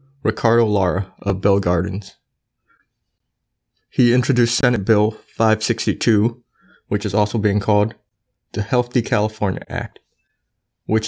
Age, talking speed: 20-39, 110 wpm